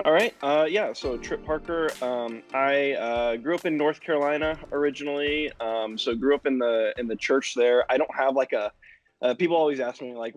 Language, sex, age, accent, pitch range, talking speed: English, male, 20-39, American, 110-140 Hz, 215 wpm